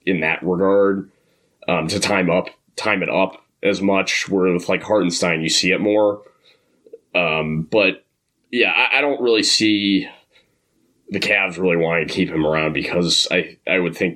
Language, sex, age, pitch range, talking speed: English, male, 20-39, 80-100 Hz, 175 wpm